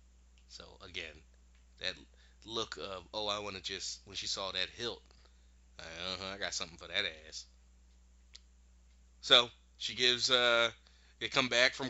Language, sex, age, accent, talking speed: English, male, 30-49, American, 155 wpm